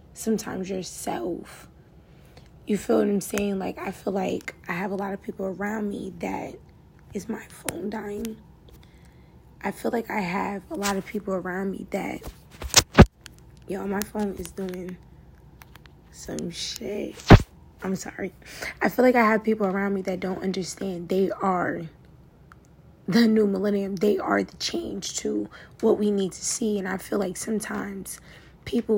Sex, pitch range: female, 190-210 Hz